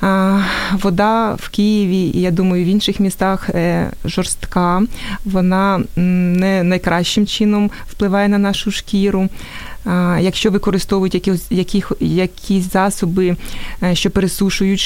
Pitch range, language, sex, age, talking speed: 180-200 Hz, Ukrainian, female, 20-39, 95 wpm